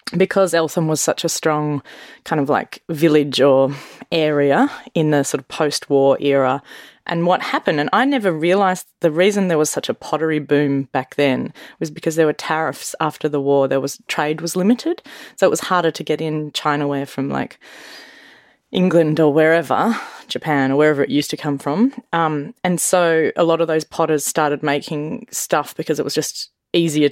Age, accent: 20-39, Australian